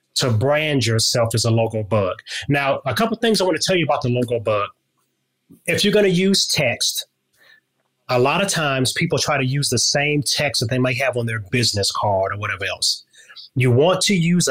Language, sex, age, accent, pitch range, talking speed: English, male, 30-49, American, 115-145 Hz, 220 wpm